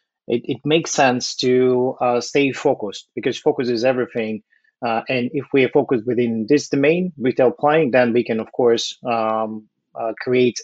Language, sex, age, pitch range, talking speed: English, male, 30-49, 115-130 Hz, 175 wpm